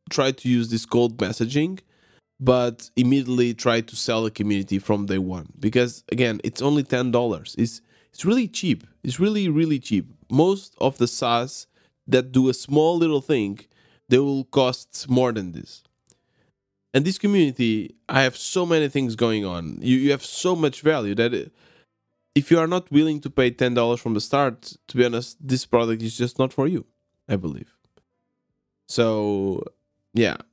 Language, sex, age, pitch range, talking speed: English, male, 20-39, 105-135 Hz, 175 wpm